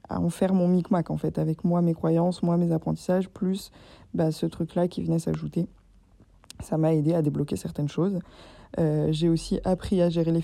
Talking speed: 200 wpm